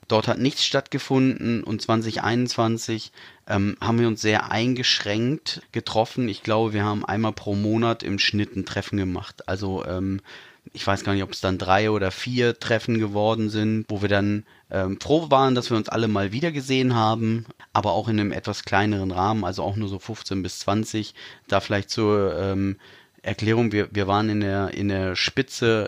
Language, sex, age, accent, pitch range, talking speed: German, male, 30-49, German, 100-115 Hz, 185 wpm